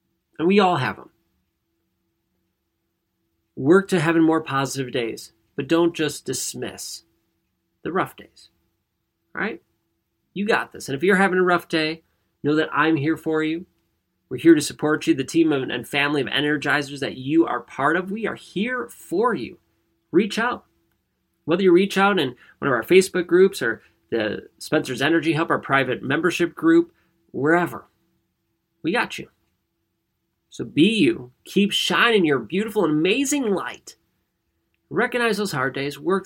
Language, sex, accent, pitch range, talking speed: English, male, American, 130-170 Hz, 160 wpm